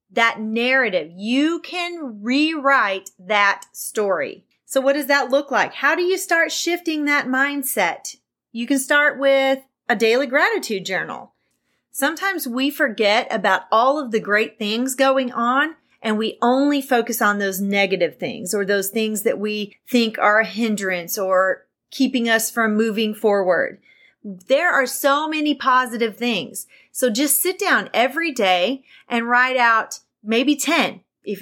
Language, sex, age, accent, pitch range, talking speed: English, female, 30-49, American, 225-295 Hz, 155 wpm